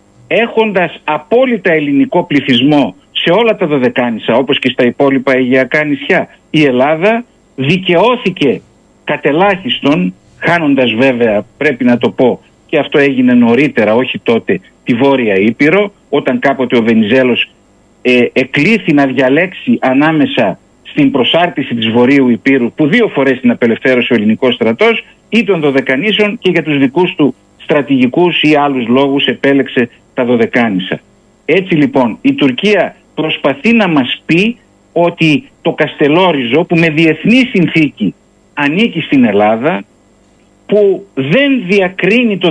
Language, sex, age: Greek, male, 60-79